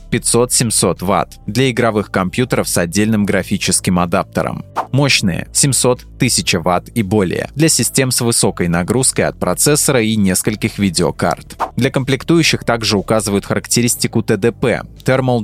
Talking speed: 120 wpm